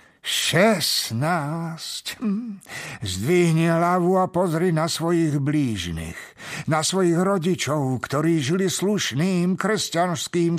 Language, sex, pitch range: Slovak, male, 155-210 Hz